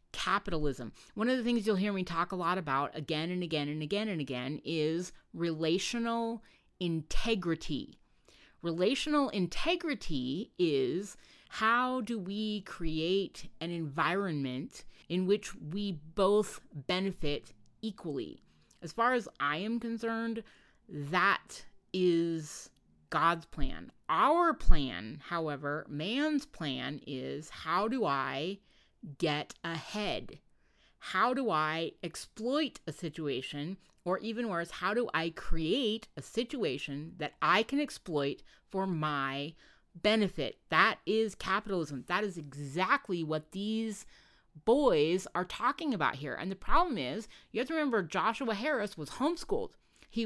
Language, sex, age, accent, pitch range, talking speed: English, female, 30-49, American, 160-225 Hz, 125 wpm